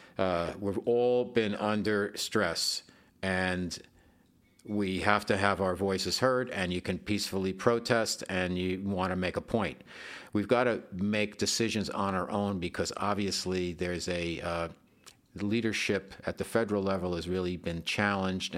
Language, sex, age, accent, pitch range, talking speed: English, male, 50-69, American, 90-105 Hz, 155 wpm